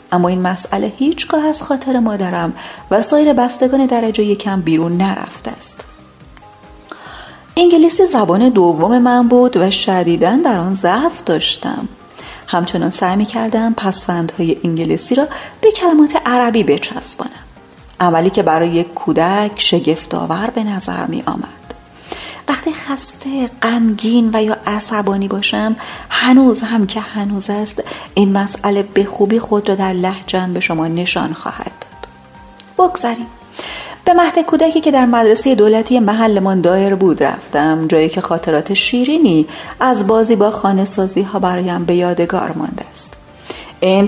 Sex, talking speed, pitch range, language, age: female, 130 wpm, 180-245 Hz, Persian, 30-49